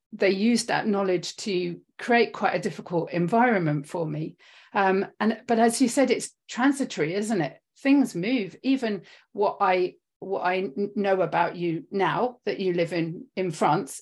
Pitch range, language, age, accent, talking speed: 175-225 Hz, English, 40-59, British, 165 wpm